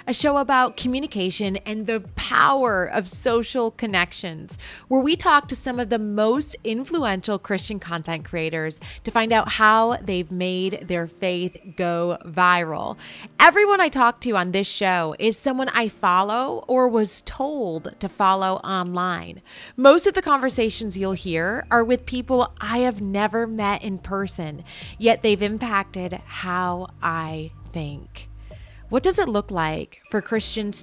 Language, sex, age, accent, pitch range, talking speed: English, female, 30-49, American, 180-245 Hz, 150 wpm